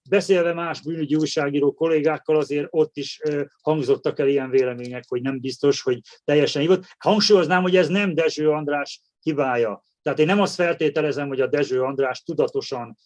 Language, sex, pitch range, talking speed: Hungarian, male, 140-195 Hz, 160 wpm